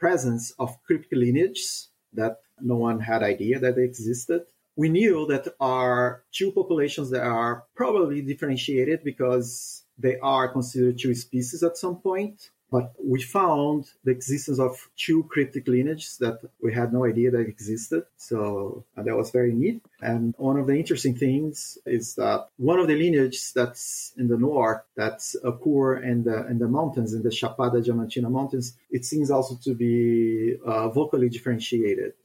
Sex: male